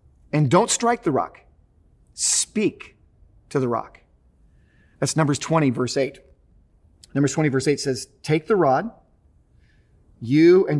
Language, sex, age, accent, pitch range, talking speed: English, male, 40-59, American, 140-190 Hz, 135 wpm